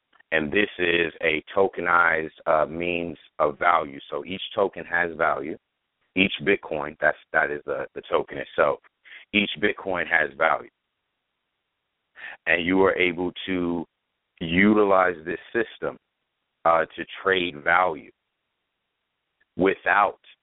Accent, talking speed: American, 120 wpm